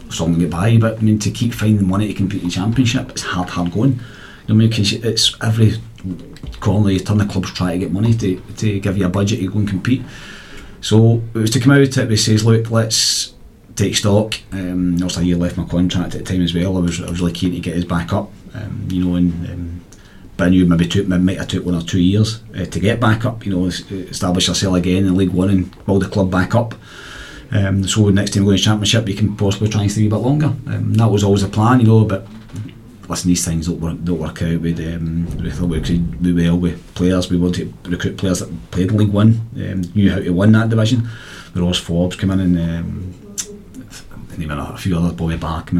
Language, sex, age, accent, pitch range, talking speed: English, male, 40-59, British, 90-110 Hz, 250 wpm